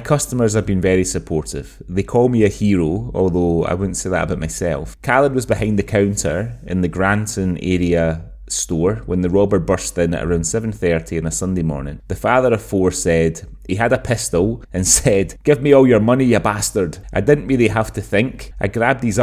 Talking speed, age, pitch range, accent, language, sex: 205 wpm, 30-49, 95-125 Hz, British, English, male